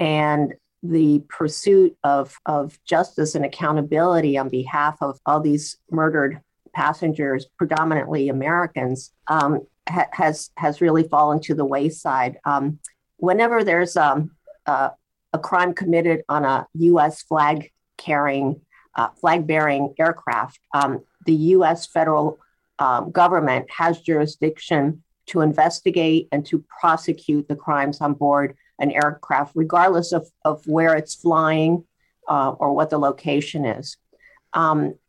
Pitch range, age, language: 150-175 Hz, 50-69, English